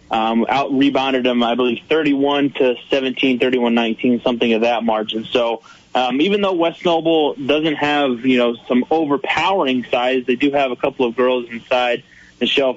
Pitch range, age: 120-135 Hz, 20-39